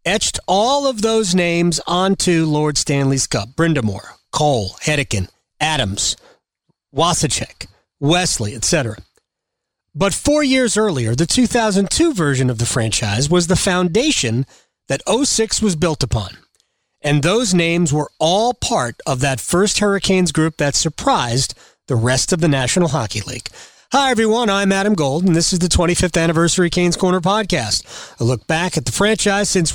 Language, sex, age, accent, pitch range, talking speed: English, male, 40-59, American, 140-200 Hz, 150 wpm